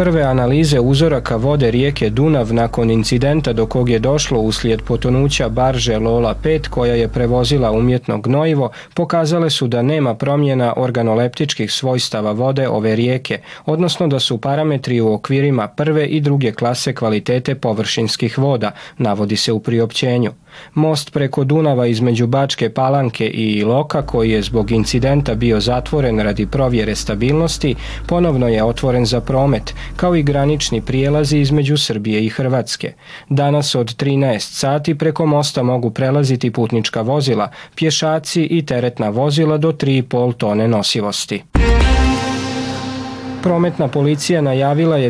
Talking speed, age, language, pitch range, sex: 135 wpm, 40-59, Croatian, 115-145 Hz, male